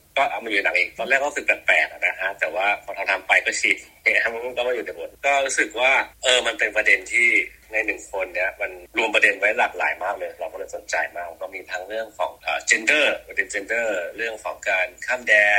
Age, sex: 30-49, male